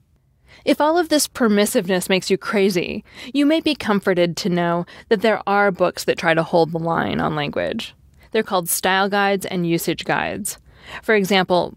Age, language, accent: 20-39, English, American